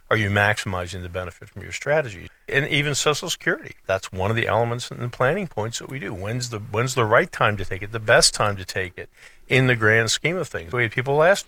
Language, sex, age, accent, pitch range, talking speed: English, male, 50-69, American, 95-120 Hz, 250 wpm